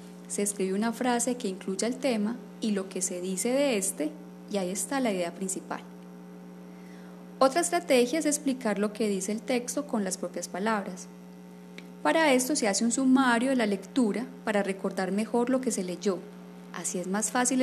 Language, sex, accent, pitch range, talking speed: Spanish, female, Colombian, 175-245 Hz, 185 wpm